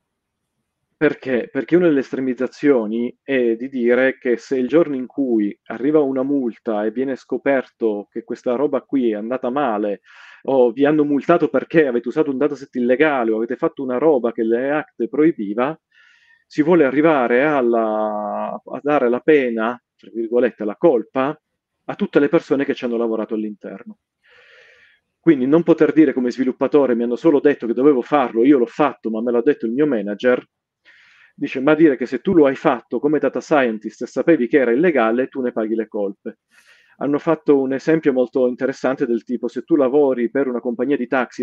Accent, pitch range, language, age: native, 120-150 Hz, Italian, 40-59